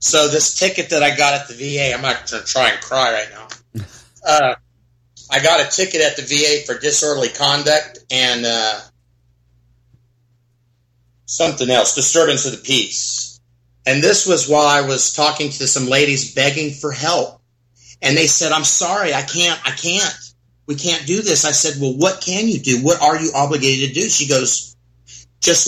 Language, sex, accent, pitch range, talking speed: English, male, American, 120-165 Hz, 185 wpm